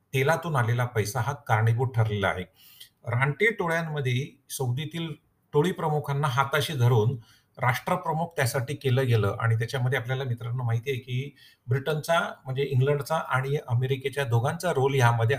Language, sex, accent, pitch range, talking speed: Marathi, male, native, 120-155 Hz, 130 wpm